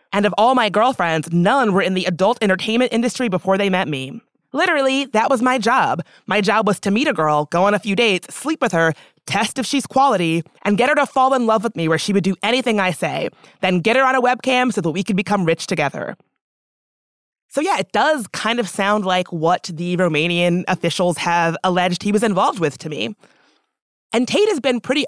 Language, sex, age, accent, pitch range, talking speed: English, female, 20-39, American, 180-250 Hz, 225 wpm